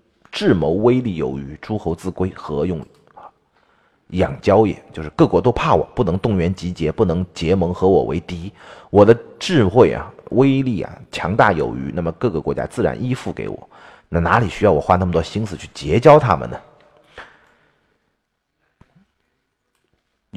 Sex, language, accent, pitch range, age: male, Chinese, native, 85-115 Hz, 30-49